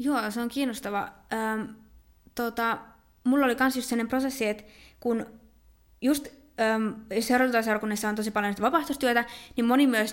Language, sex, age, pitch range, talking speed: Finnish, female, 20-39, 205-240 Hz, 130 wpm